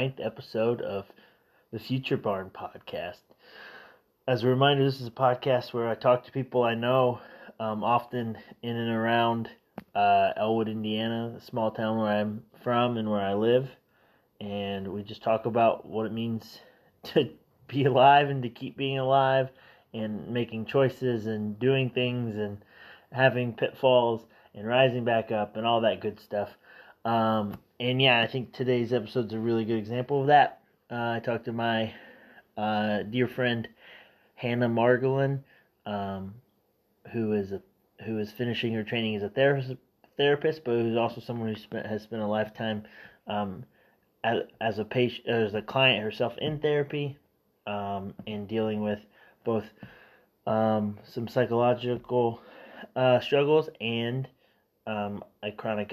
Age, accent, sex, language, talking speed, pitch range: 30-49, American, male, English, 155 wpm, 110-130 Hz